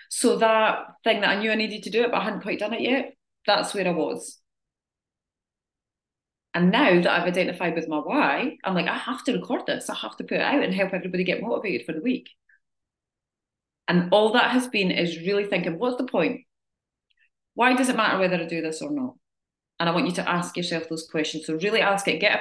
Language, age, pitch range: English, 30-49, 175-245 Hz